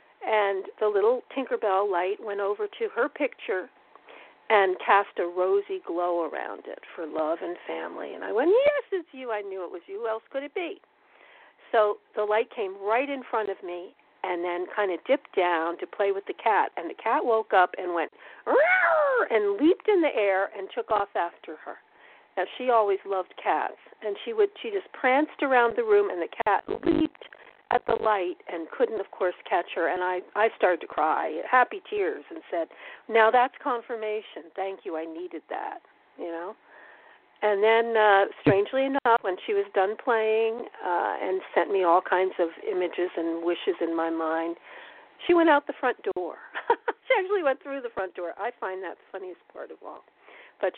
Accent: American